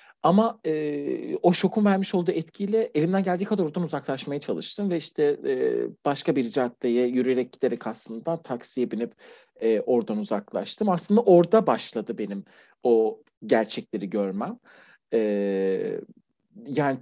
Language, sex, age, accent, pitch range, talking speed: Turkish, male, 40-59, native, 120-195 Hz, 115 wpm